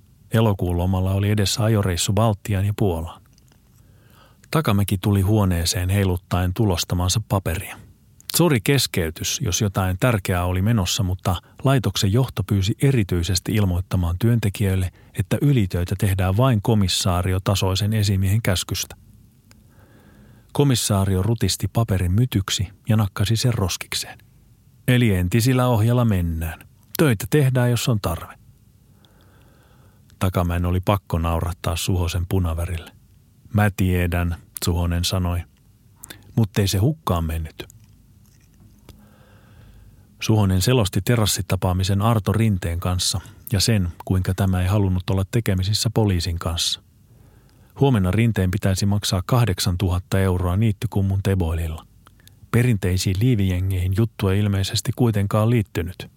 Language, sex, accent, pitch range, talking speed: Finnish, male, native, 95-115 Hz, 105 wpm